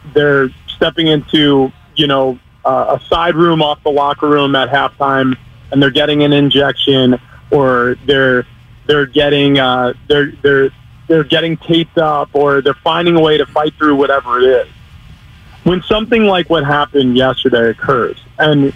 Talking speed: 160 wpm